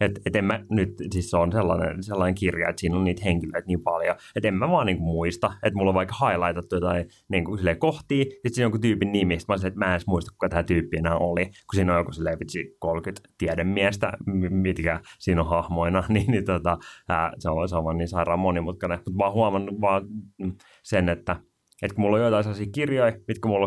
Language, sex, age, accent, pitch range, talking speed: Finnish, male, 30-49, native, 90-110 Hz, 230 wpm